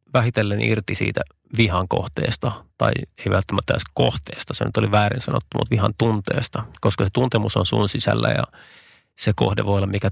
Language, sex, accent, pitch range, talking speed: Finnish, male, native, 100-115 Hz, 170 wpm